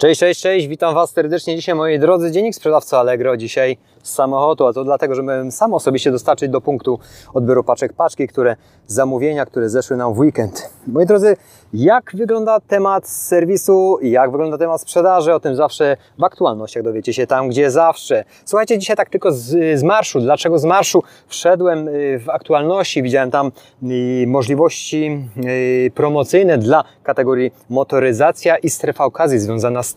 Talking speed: 165 wpm